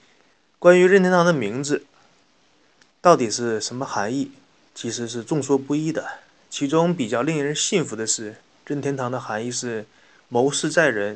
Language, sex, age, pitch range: Chinese, male, 30-49, 120-160 Hz